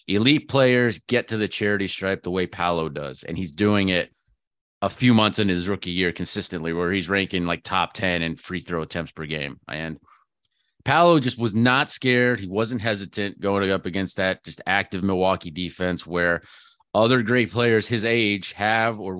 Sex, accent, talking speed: male, American, 190 wpm